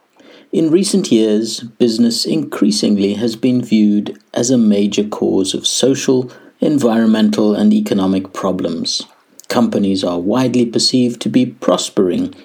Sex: male